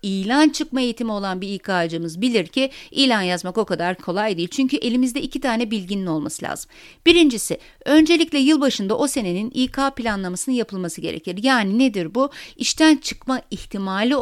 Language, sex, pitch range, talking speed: Turkish, female, 195-275 Hz, 150 wpm